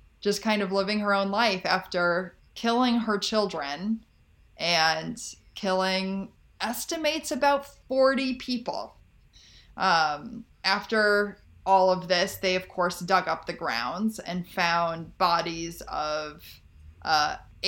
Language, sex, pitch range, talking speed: English, female, 170-220 Hz, 115 wpm